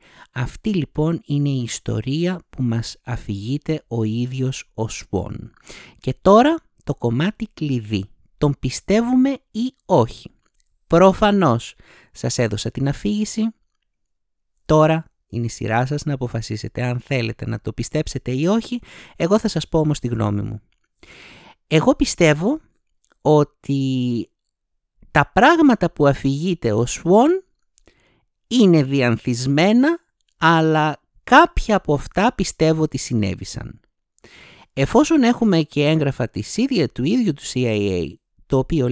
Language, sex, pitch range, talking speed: Greek, male, 115-185 Hz, 120 wpm